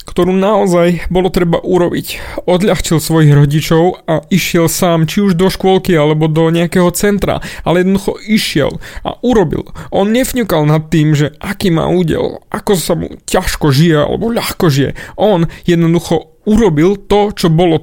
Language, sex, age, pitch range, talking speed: Slovak, male, 30-49, 160-200 Hz, 155 wpm